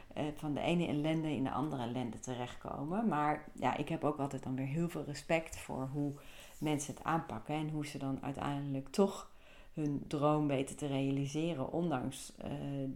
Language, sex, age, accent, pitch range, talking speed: Dutch, female, 40-59, Dutch, 135-160 Hz, 175 wpm